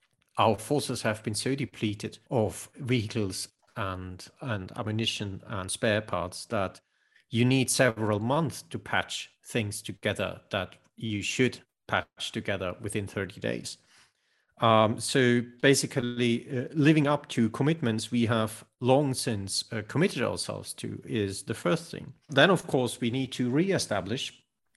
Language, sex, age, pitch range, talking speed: English, male, 40-59, 105-130 Hz, 140 wpm